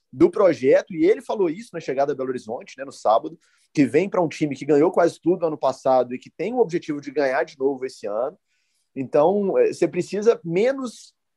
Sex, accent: male, Brazilian